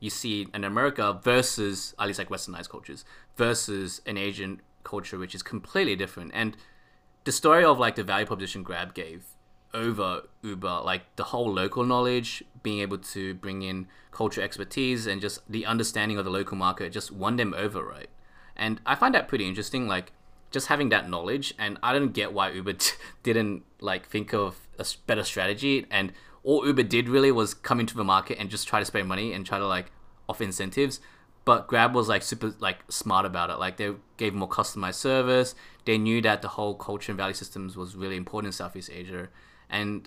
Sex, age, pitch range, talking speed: male, 20-39, 95-115 Hz, 200 wpm